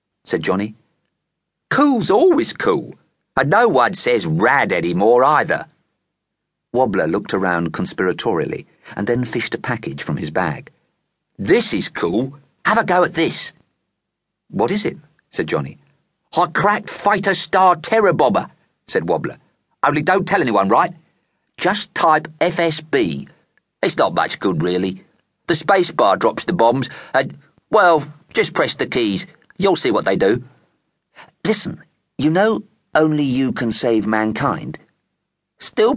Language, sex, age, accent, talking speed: English, male, 50-69, British, 140 wpm